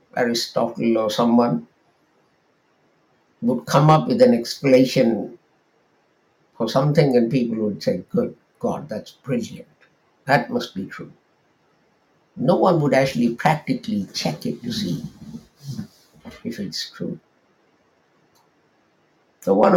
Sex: male